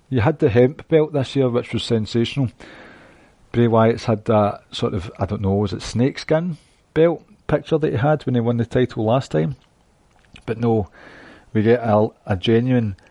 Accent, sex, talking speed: British, male, 190 wpm